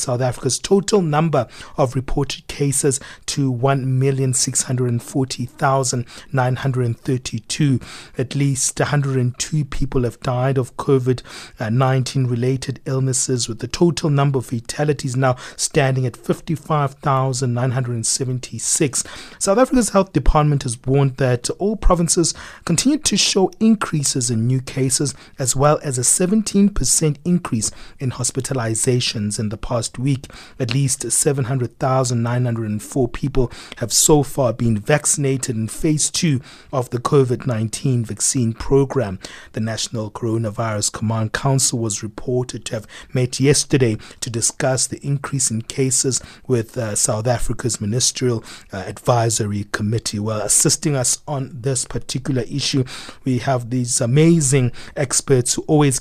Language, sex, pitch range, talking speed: English, male, 120-140 Hz, 120 wpm